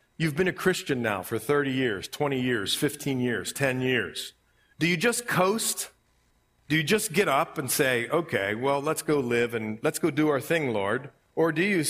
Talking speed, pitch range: 200 wpm, 115-150 Hz